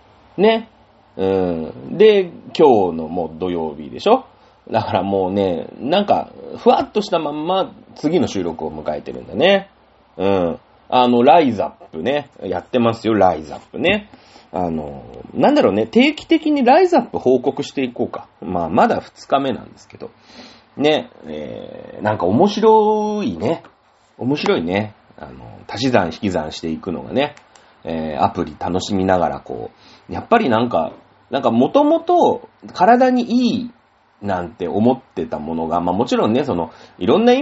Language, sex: Japanese, male